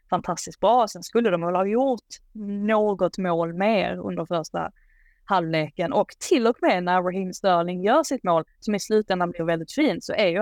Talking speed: 190 wpm